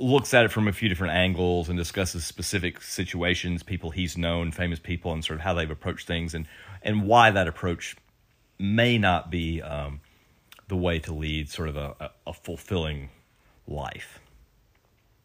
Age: 30-49